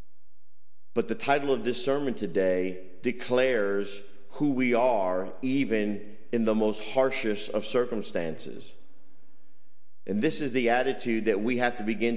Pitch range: 105-125 Hz